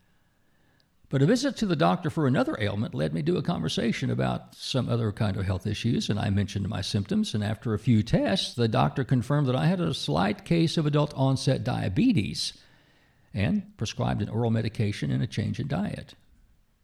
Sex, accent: male, American